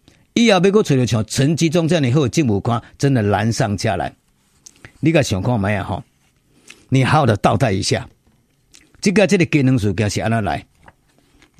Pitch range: 125-185 Hz